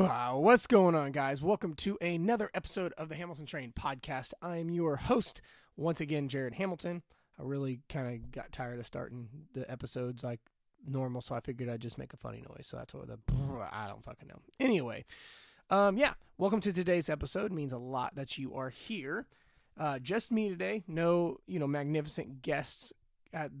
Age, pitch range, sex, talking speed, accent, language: 20-39, 130-175 Hz, male, 190 wpm, American, English